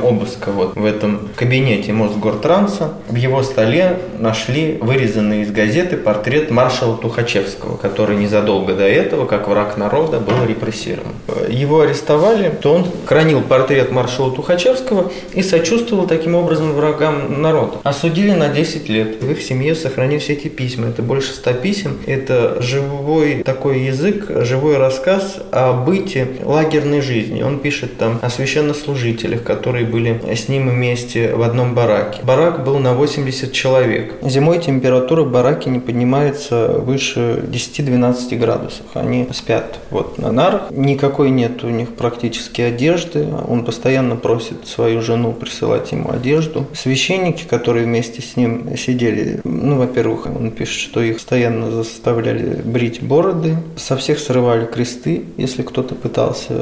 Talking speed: 140 wpm